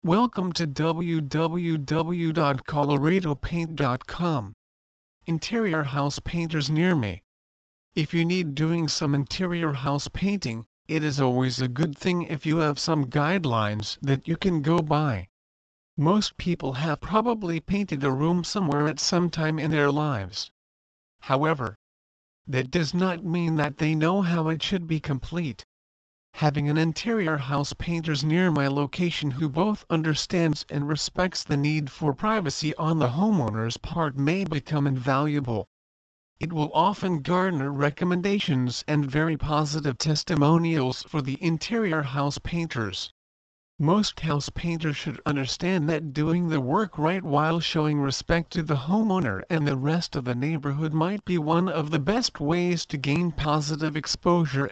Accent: American